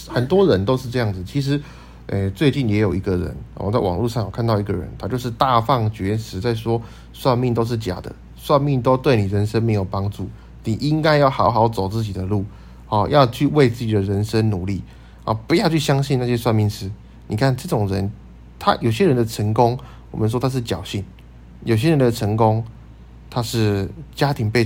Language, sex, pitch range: Chinese, male, 95-130 Hz